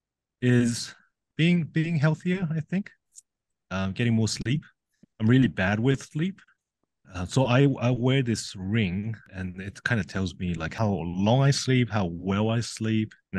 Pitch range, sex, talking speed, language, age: 95-120 Hz, male, 175 wpm, English, 30-49